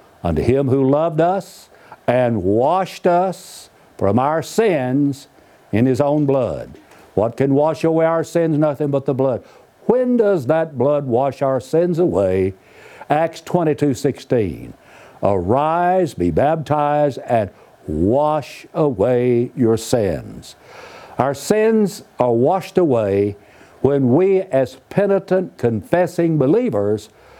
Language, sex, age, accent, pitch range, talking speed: English, male, 60-79, American, 125-170 Hz, 120 wpm